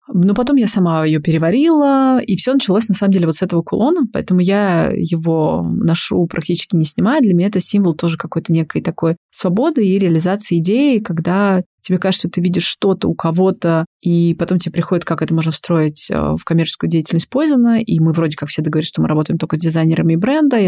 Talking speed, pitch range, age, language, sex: 205 wpm, 165-200 Hz, 20-39, Russian, female